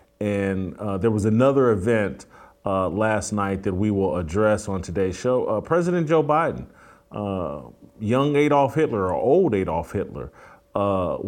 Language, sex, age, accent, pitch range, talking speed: English, male, 40-59, American, 100-120 Hz, 155 wpm